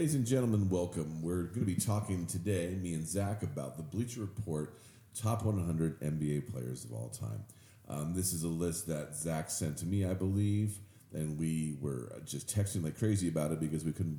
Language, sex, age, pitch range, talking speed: English, male, 40-59, 80-105 Hz, 205 wpm